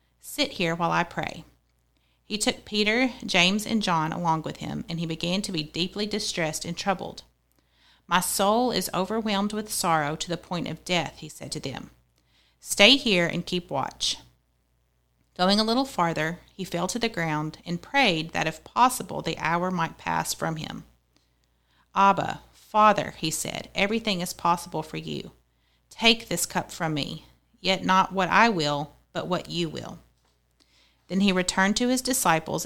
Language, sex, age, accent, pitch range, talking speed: English, female, 40-59, American, 145-195 Hz, 170 wpm